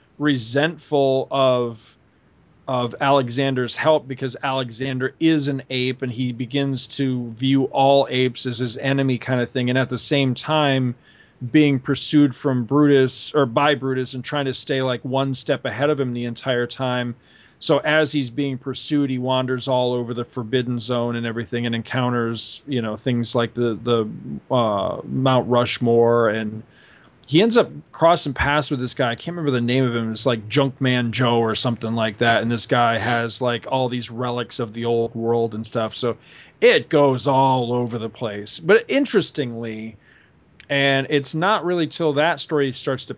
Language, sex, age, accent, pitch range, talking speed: English, male, 40-59, American, 120-140 Hz, 180 wpm